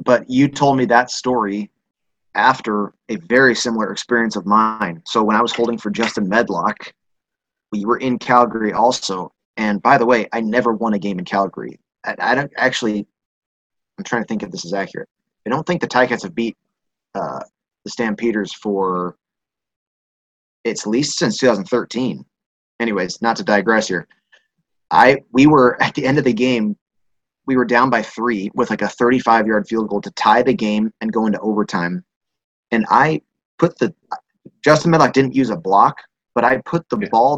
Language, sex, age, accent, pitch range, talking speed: English, male, 30-49, American, 105-125 Hz, 185 wpm